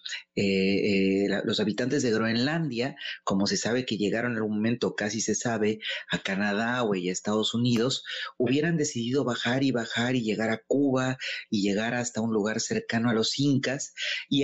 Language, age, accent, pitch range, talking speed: Spanish, 30-49, Mexican, 110-150 Hz, 185 wpm